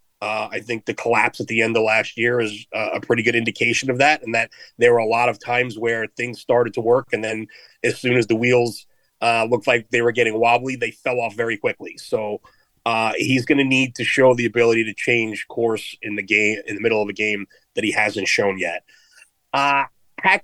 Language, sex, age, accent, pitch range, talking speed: English, male, 30-49, American, 115-145 Hz, 230 wpm